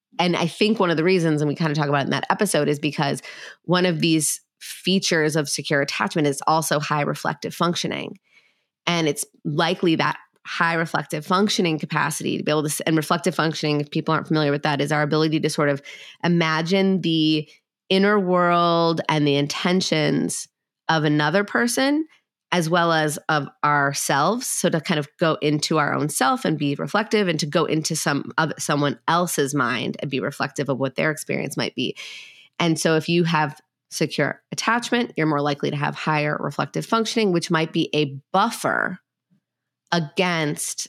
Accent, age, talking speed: American, 30-49, 180 wpm